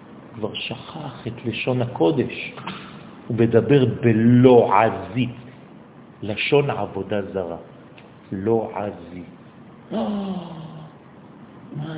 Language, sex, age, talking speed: French, male, 50-69, 70 wpm